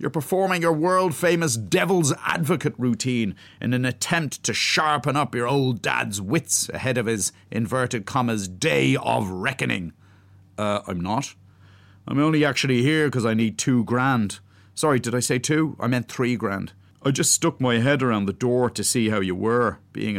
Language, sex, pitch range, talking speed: English, male, 105-150 Hz, 180 wpm